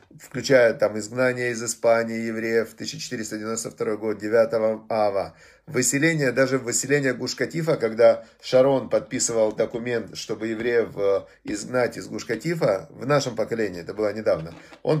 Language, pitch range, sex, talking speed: Russian, 115-140 Hz, male, 120 wpm